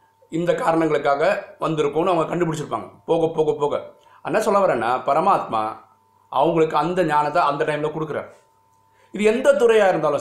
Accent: native